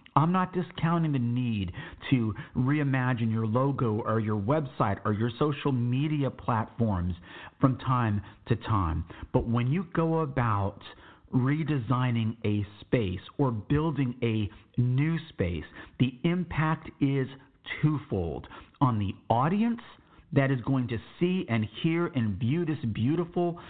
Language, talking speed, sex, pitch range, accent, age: English, 130 wpm, male, 115-155 Hz, American, 50-69